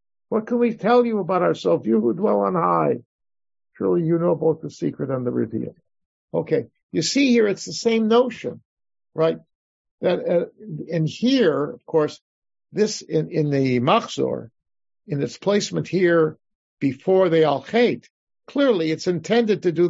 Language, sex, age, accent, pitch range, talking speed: English, male, 50-69, American, 150-195 Hz, 165 wpm